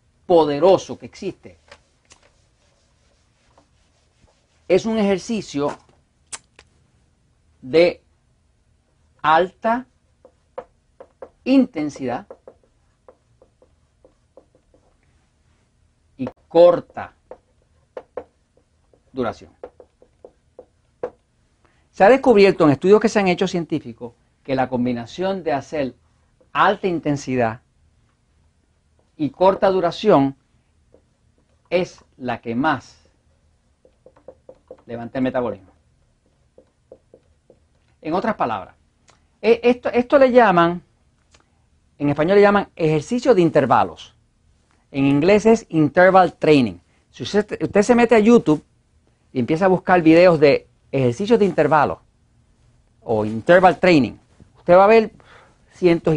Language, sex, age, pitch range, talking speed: Spanish, male, 50-69, 120-200 Hz, 90 wpm